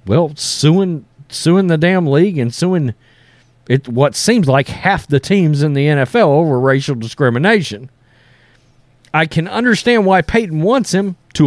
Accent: American